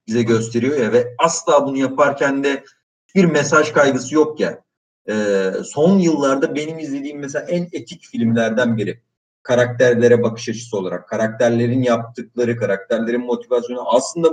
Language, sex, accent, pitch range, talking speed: Turkish, male, native, 115-155 Hz, 135 wpm